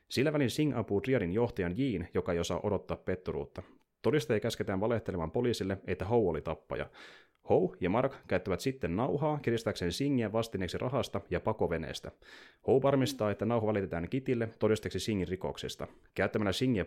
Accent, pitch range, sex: native, 90-125 Hz, male